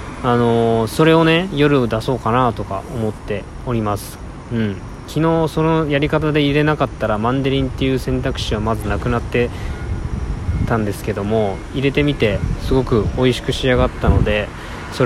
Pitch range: 105-130 Hz